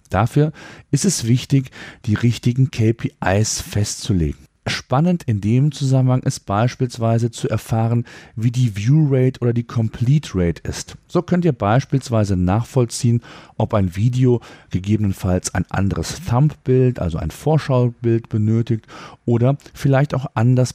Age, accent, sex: 40-59, German, male